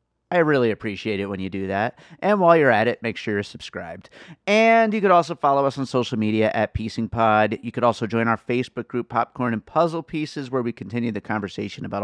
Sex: male